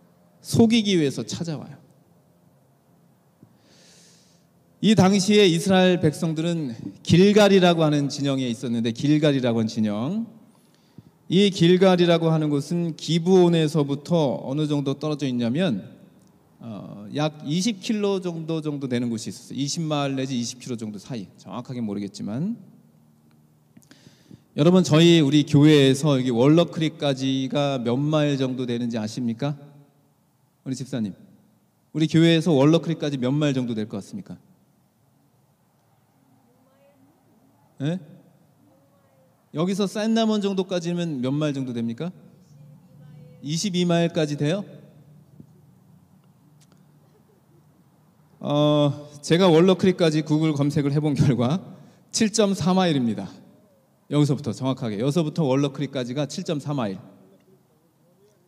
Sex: male